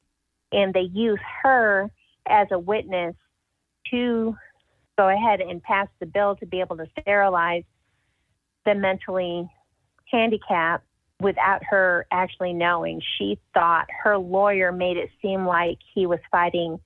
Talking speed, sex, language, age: 130 wpm, female, English, 40-59